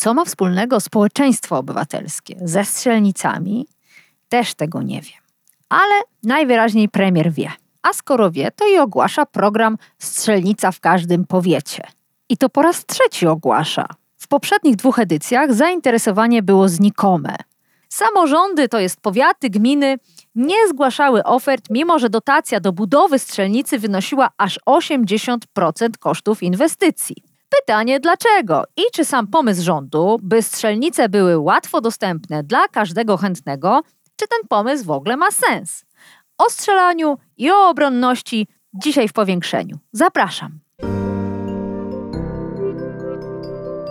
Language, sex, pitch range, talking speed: Polish, female, 175-280 Hz, 120 wpm